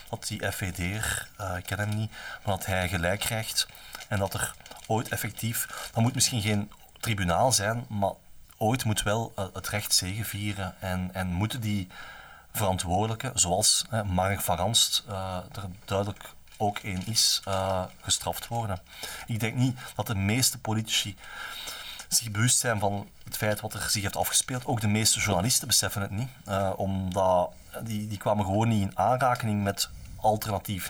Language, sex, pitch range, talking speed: Dutch, male, 95-115 Hz, 160 wpm